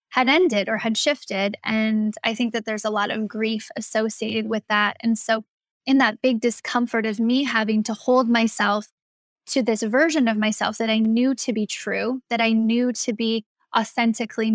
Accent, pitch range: American, 220-245 Hz